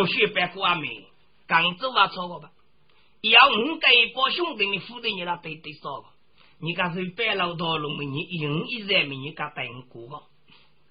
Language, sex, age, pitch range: Chinese, male, 40-59, 175-265 Hz